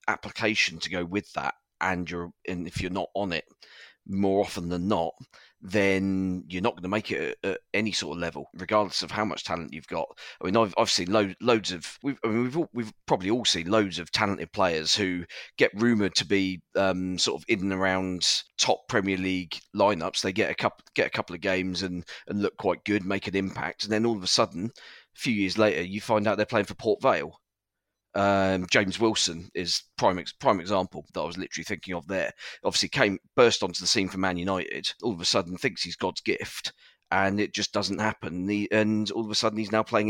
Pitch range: 90-110 Hz